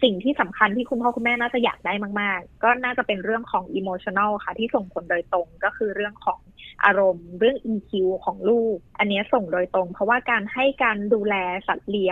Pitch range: 190-235 Hz